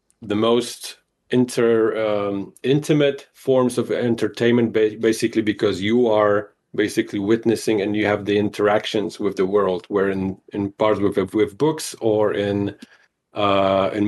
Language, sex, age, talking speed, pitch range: English, male, 40-59, 145 wpm, 105-120 Hz